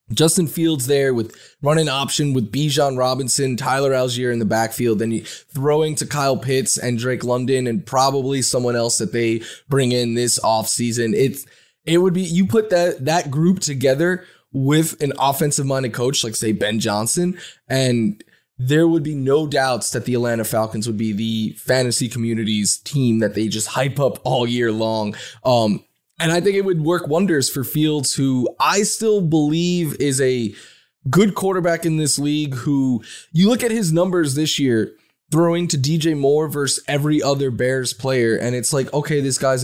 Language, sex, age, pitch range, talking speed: English, male, 20-39, 120-160 Hz, 185 wpm